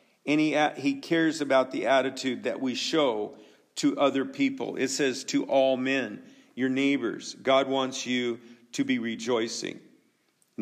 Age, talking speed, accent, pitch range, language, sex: 50-69, 155 wpm, American, 130-165 Hz, English, male